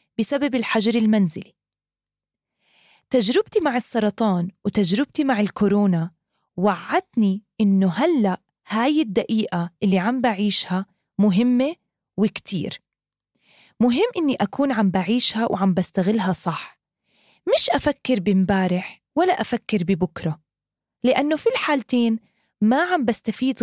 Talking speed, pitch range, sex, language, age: 100 wpm, 195-255 Hz, female, English, 20-39